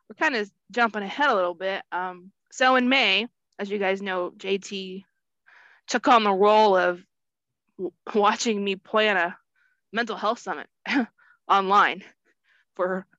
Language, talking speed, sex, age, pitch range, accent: English, 145 wpm, female, 20-39, 185-225 Hz, American